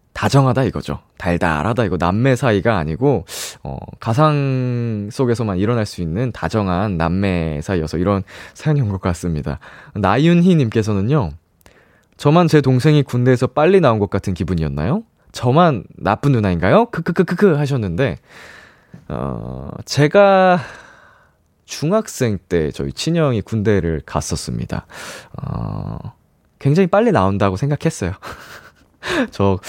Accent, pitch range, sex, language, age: native, 85-145 Hz, male, Korean, 20-39